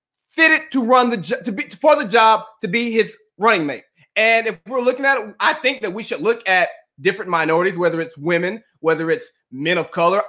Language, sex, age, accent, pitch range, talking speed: English, male, 30-49, American, 220-300 Hz, 215 wpm